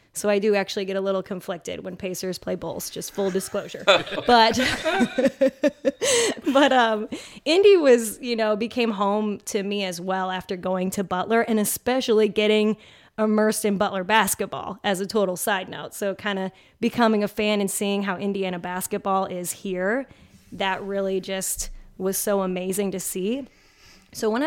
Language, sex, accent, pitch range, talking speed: English, female, American, 195-225 Hz, 165 wpm